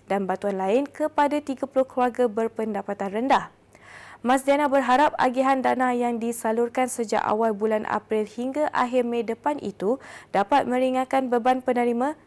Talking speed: 135 wpm